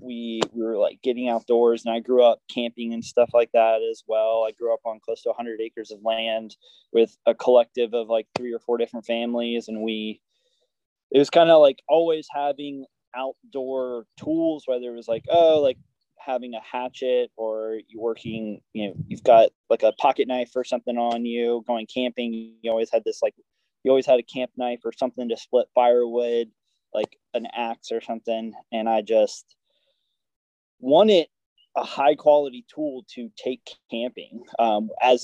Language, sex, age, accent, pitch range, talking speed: English, male, 20-39, American, 115-135 Hz, 185 wpm